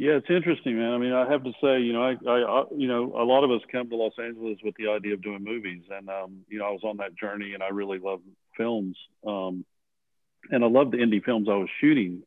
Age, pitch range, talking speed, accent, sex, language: 50-69, 100-135 Hz, 270 wpm, American, male, English